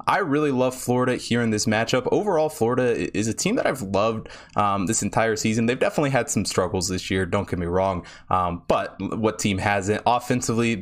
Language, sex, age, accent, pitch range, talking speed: English, male, 20-39, American, 105-130 Hz, 205 wpm